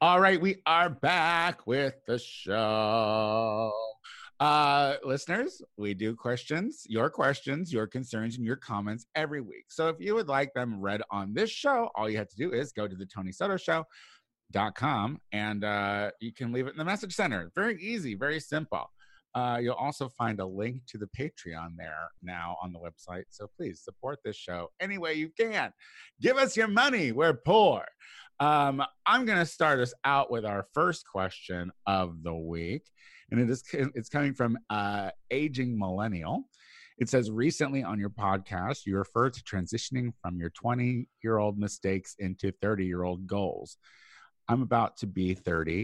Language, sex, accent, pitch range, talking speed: English, male, American, 95-140 Hz, 175 wpm